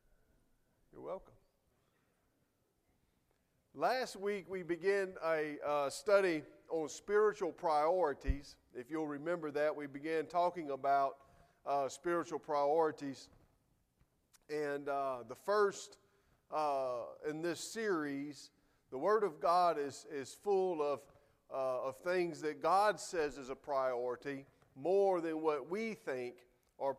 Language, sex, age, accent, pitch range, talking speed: English, male, 40-59, American, 140-180 Hz, 120 wpm